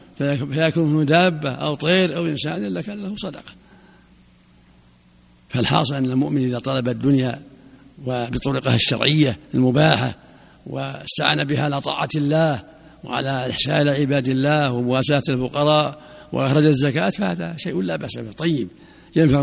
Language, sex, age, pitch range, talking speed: Arabic, male, 60-79, 125-160 Hz, 115 wpm